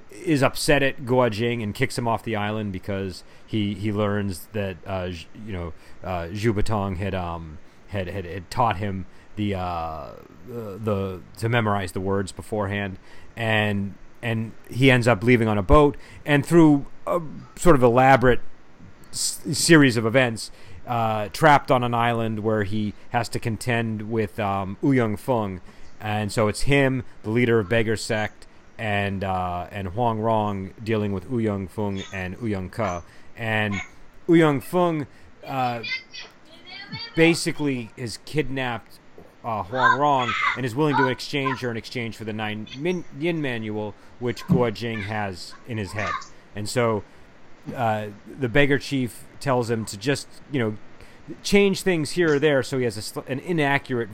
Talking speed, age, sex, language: 165 wpm, 30-49, male, English